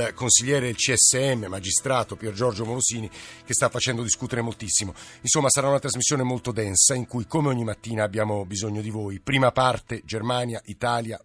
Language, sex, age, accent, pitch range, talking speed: Italian, male, 50-69, native, 105-125 Hz, 165 wpm